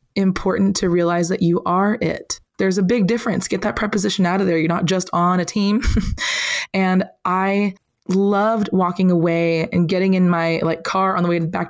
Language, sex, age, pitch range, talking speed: English, female, 20-39, 175-210 Hz, 195 wpm